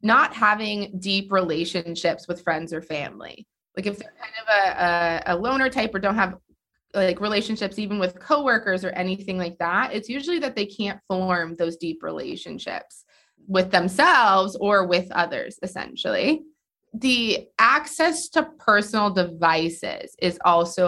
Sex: female